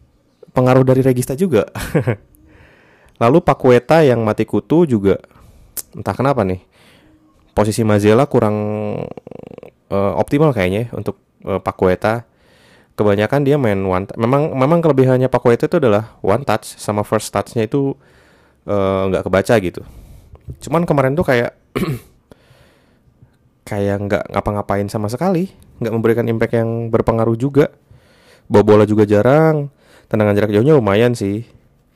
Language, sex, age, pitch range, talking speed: Indonesian, male, 20-39, 105-135 Hz, 125 wpm